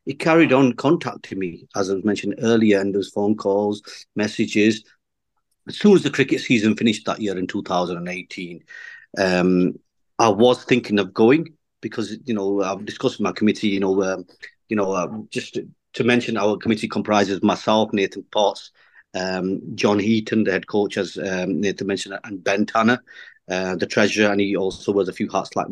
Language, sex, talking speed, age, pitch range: English, male, 185 wpm, 40-59, 100-115 Hz